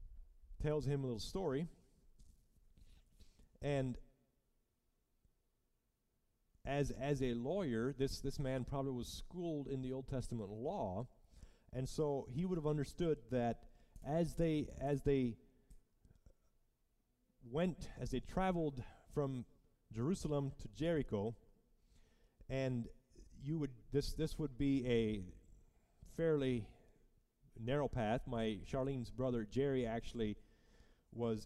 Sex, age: male, 30-49